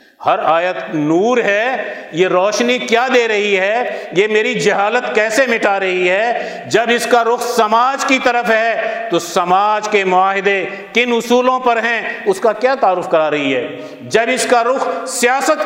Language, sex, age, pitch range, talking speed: Urdu, male, 50-69, 185-235 Hz, 175 wpm